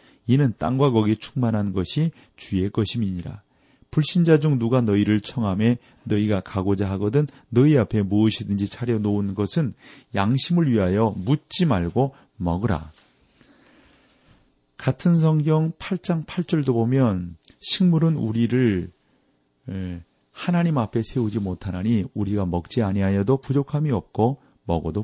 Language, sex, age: Korean, male, 40-59